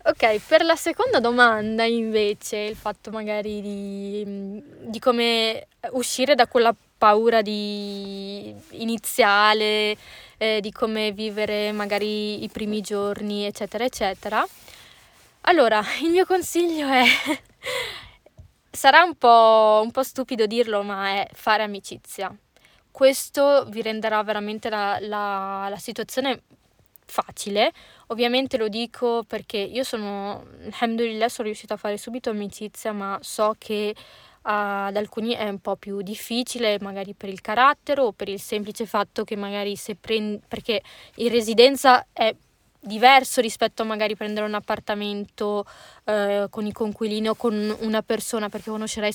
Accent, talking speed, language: native, 135 wpm, Italian